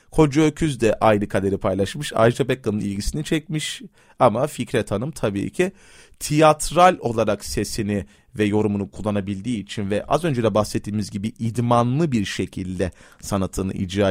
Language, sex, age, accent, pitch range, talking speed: Turkish, male, 30-49, native, 105-150 Hz, 140 wpm